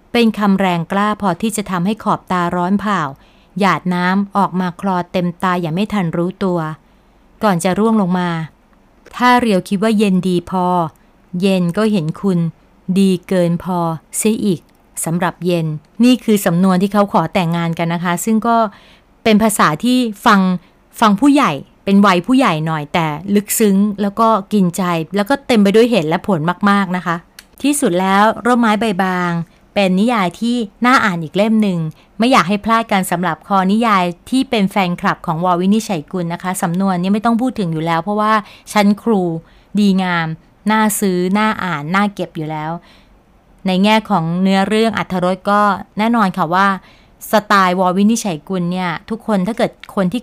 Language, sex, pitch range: Thai, female, 180-215 Hz